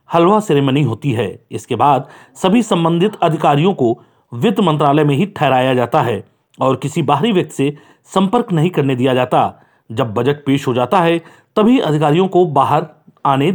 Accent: native